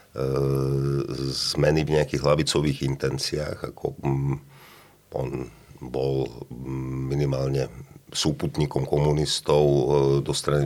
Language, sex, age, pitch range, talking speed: Slovak, male, 50-69, 70-75 Hz, 75 wpm